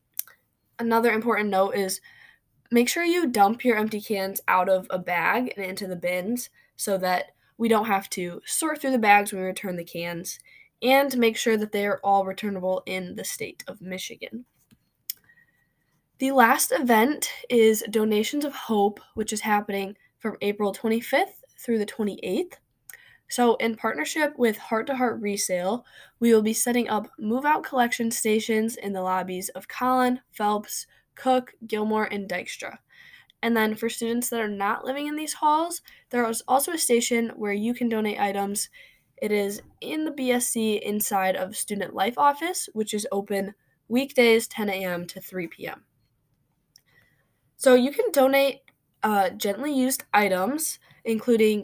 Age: 10-29